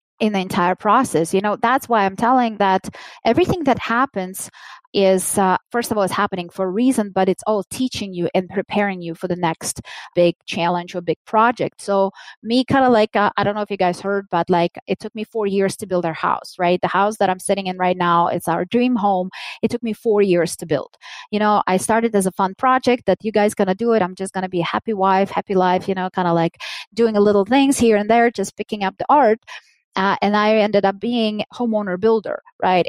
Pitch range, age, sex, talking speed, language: 185-230 Hz, 20-39, female, 245 wpm, English